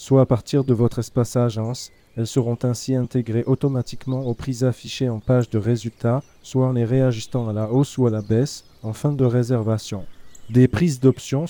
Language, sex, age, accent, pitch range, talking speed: French, male, 40-59, French, 115-135 Hz, 190 wpm